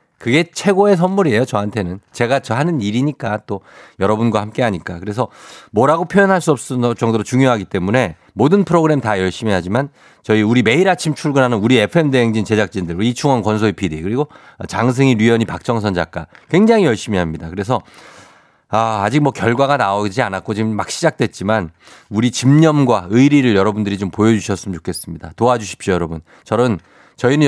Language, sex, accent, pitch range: Korean, male, native, 105-155 Hz